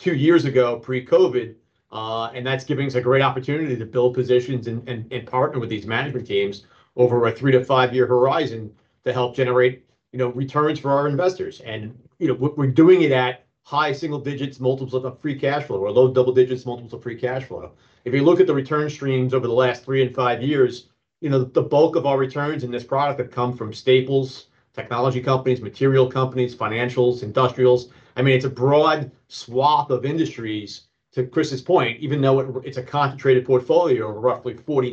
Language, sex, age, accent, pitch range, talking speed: English, male, 40-59, American, 125-140 Hz, 200 wpm